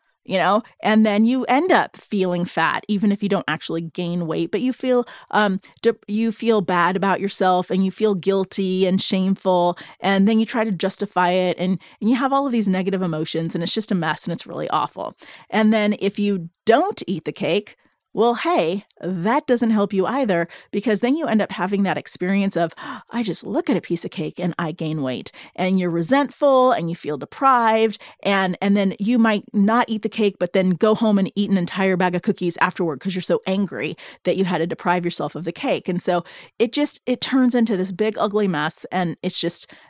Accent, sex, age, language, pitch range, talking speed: American, female, 30-49, English, 185-240 Hz, 220 wpm